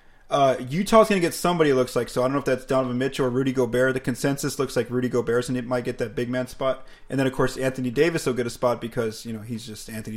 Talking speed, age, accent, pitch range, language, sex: 295 wpm, 20-39, American, 120-145 Hz, English, male